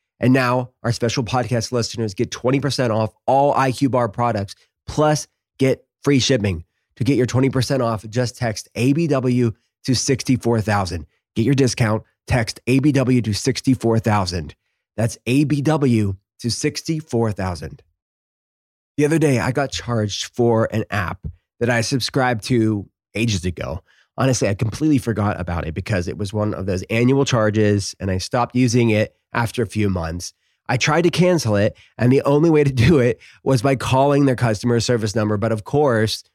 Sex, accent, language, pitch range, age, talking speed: male, American, English, 105-130 Hz, 30-49, 160 wpm